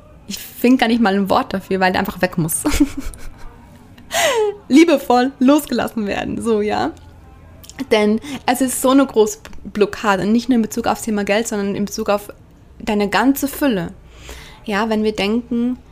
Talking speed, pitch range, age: 160 wpm, 185-220 Hz, 20-39